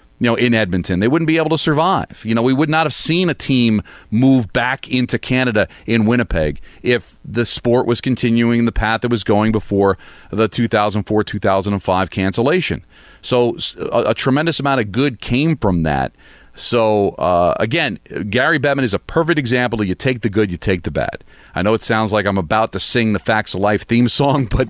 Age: 40-59